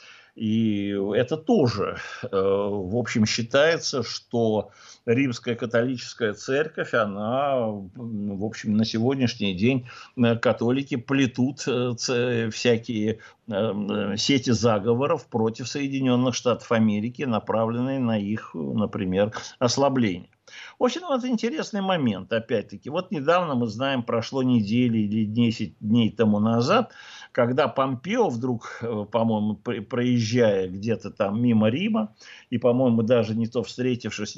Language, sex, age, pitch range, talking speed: Russian, male, 60-79, 110-135 Hz, 110 wpm